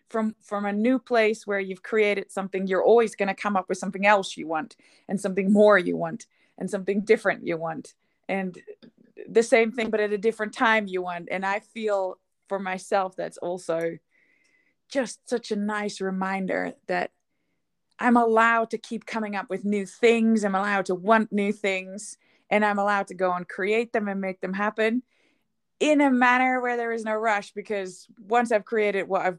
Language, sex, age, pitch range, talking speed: English, female, 20-39, 185-225 Hz, 190 wpm